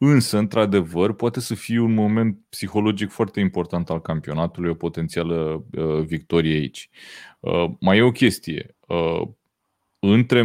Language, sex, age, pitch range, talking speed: Romanian, male, 30-49, 90-115 Hz, 120 wpm